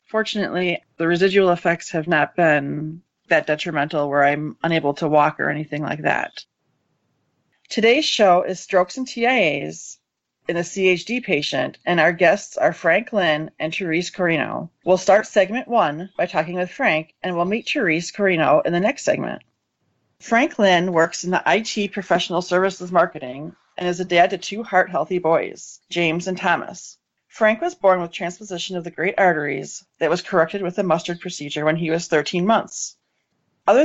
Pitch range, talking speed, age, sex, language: 160-195 Hz, 170 wpm, 30-49, female, English